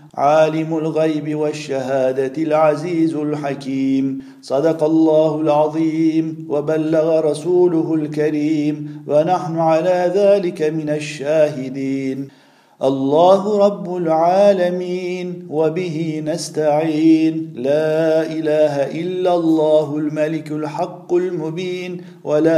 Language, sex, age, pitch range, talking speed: Turkish, male, 50-69, 150-170 Hz, 75 wpm